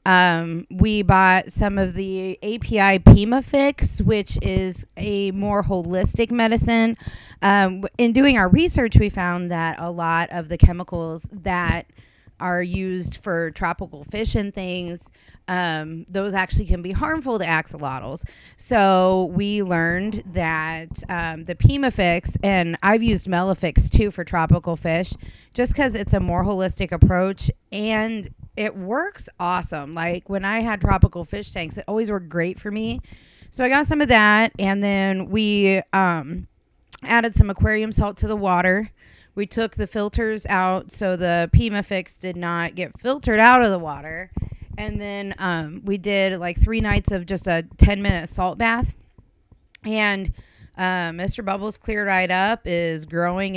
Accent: American